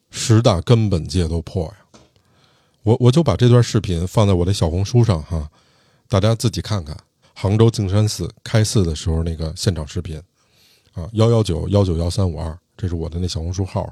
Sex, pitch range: male, 85-115 Hz